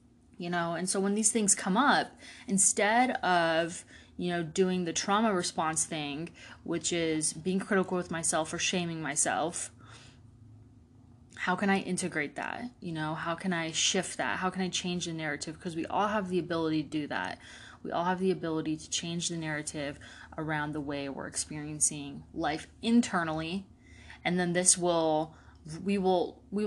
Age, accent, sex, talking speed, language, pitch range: 20-39, American, female, 175 wpm, English, 155-190 Hz